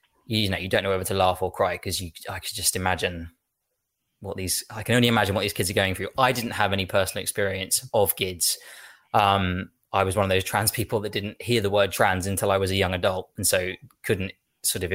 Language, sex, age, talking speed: English, male, 20-39, 240 wpm